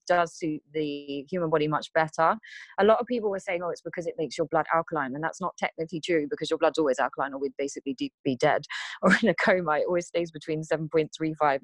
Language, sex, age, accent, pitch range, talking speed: English, female, 20-39, British, 150-175 Hz, 230 wpm